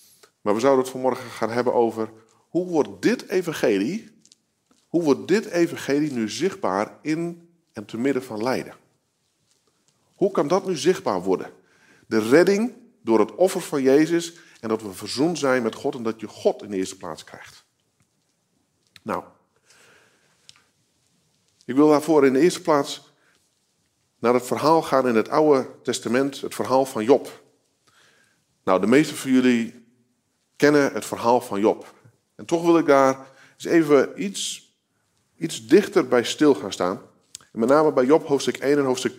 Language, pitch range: Dutch, 115-155 Hz